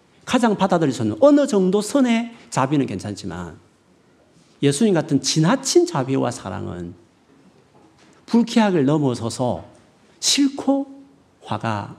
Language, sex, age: Korean, male, 40-59